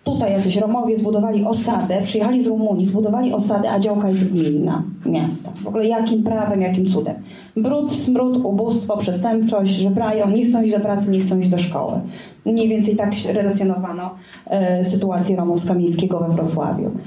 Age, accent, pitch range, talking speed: 20-39, native, 180-230 Hz, 160 wpm